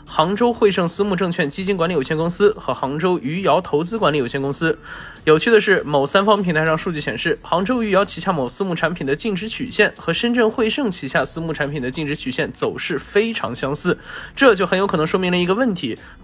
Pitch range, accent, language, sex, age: 150-215 Hz, native, Chinese, male, 20-39